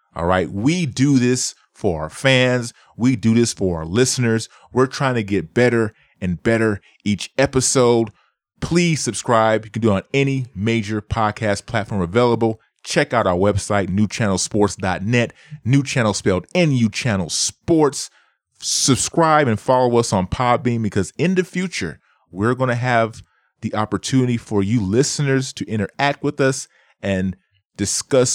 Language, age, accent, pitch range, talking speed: English, 30-49, American, 100-130 Hz, 150 wpm